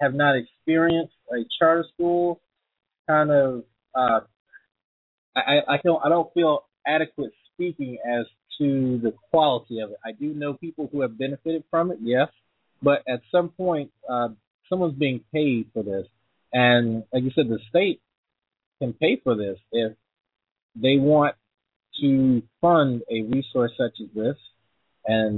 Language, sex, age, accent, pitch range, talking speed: English, male, 30-49, American, 115-145 Hz, 150 wpm